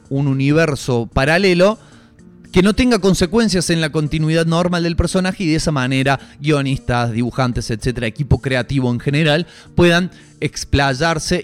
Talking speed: 135 wpm